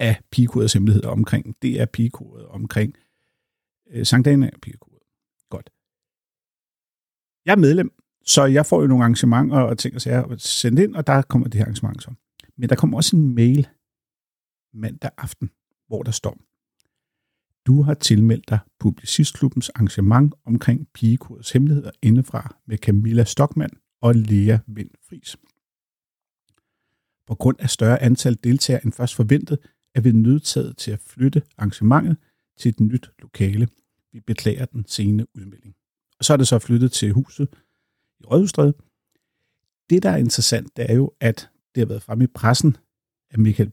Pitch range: 110-135 Hz